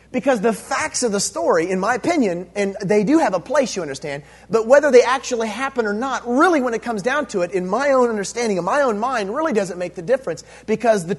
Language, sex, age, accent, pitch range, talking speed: English, male, 30-49, American, 175-260 Hz, 245 wpm